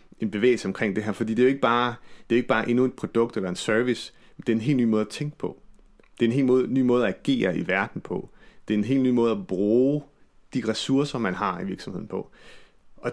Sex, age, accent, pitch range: male, 30-49, native, 95-125 Hz